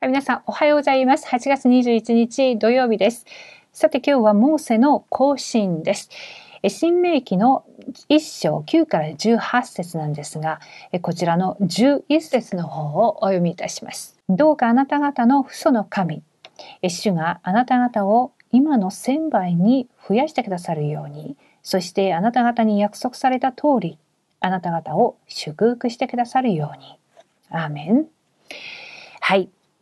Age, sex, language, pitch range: 40-59, female, Korean, 185-260 Hz